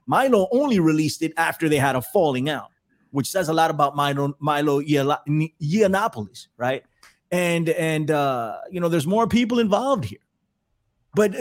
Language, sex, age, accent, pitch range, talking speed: English, male, 30-49, American, 140-200 Hz, 160 wpm